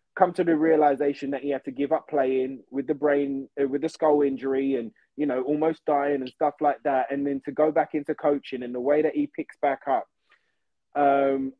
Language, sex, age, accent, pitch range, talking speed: English, male, 20-39, British, 140-195 Hz, 220 wpm